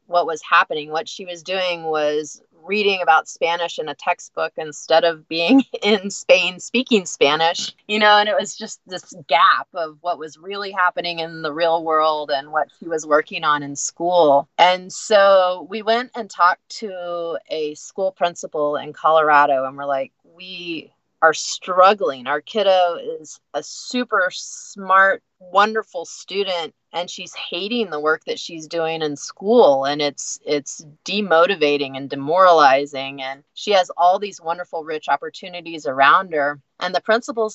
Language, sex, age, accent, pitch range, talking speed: English, female, 30-49, American, 155-200 Hz, 160 wpm